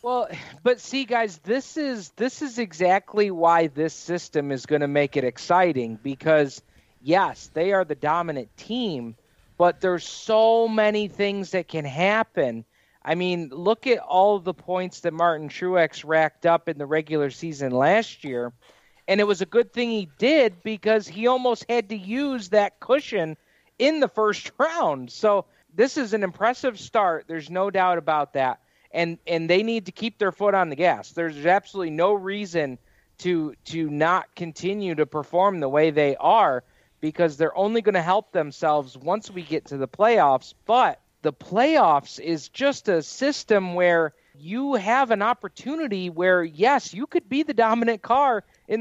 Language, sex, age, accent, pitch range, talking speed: English, male, 40-59, American, 160-225 Hz, 175 wpm